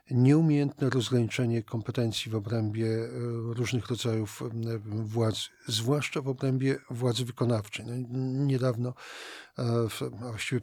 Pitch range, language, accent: 115-130 Hz, Polish, native